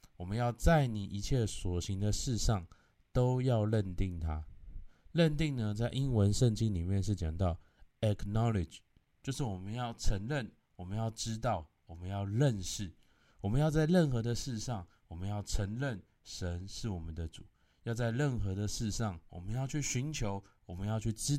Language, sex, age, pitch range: Chinese, male, 20-39, 95-125 Hz